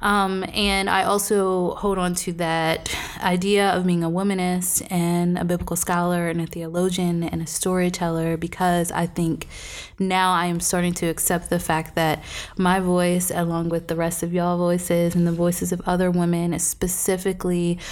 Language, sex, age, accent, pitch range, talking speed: English, female, 20-39, American, 170-190 Hz, 165 wpm